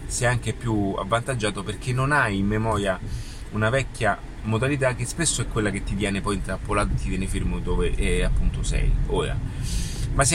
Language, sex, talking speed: Italian, male, 175 wpm